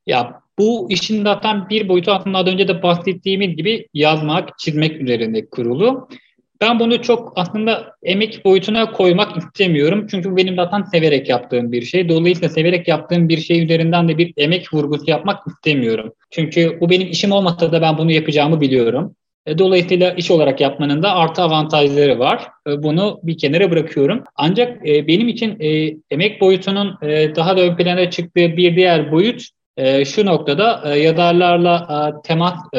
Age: 30-49